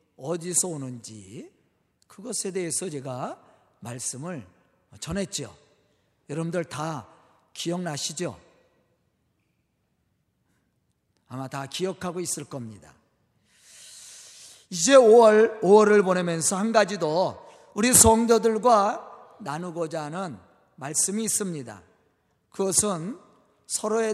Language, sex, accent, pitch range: Korean, male, native, 170-245 Hz